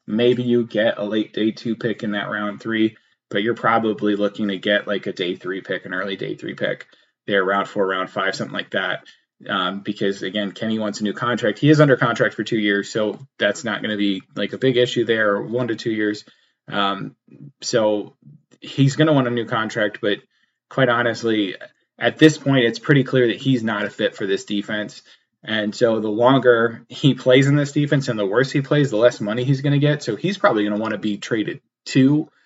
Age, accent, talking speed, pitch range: 20-39, American, 225 wpm, 105-130 Hz